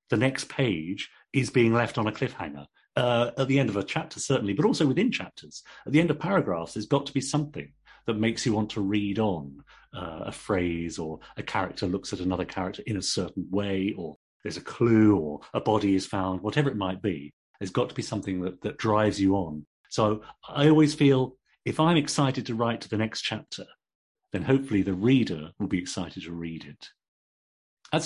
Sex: male